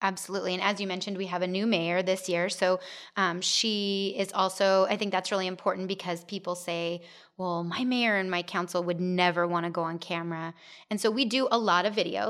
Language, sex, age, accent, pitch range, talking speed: English, female, 30-49, American, 180-200 Hz, 225 wpm